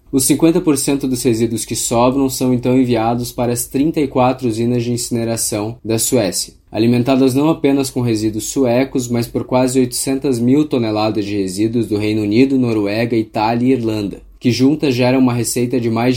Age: 20-39